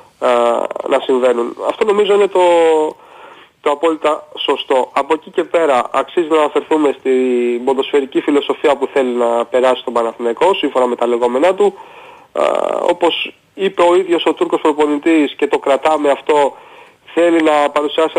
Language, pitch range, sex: Greek, 130-175 Hz, male